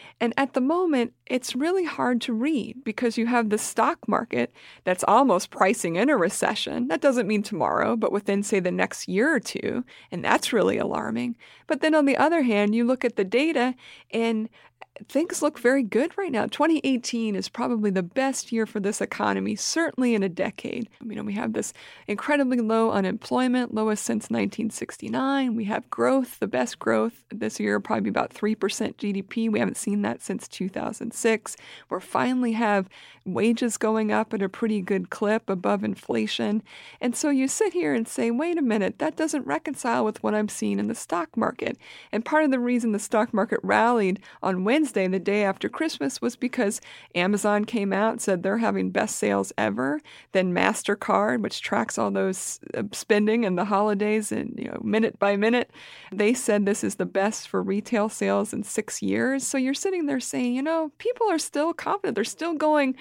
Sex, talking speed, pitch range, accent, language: female, 190 wpm, 205-275 Hz, American, English